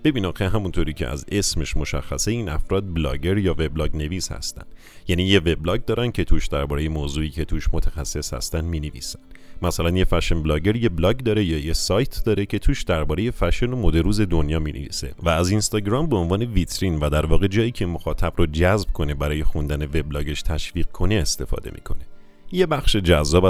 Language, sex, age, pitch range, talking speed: Persian, male, 40-59, 80-100 Hz, 185 wpm